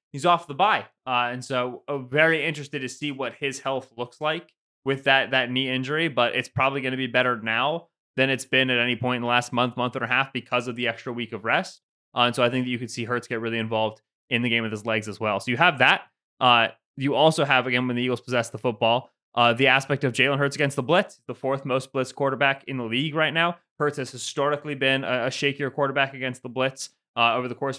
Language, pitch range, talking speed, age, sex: English, 125-155 Hz, 260 wpm, 20-39, male